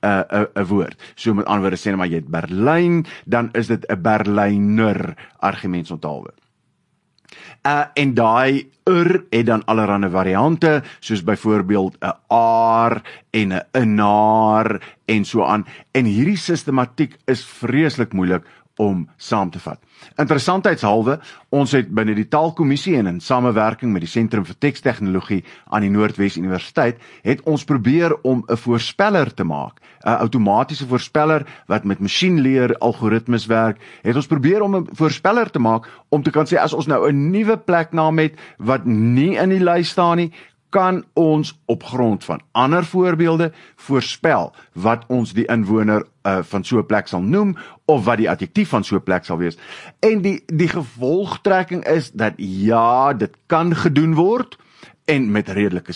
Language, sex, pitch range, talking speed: English, male, 105-155 Hz, 155 wpm